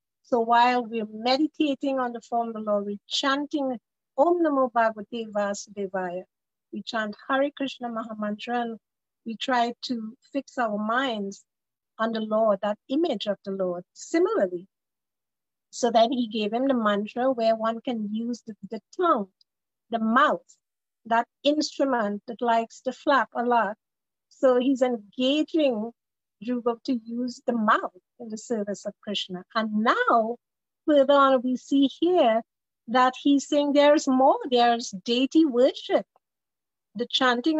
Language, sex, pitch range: English, female, 220-275 Hz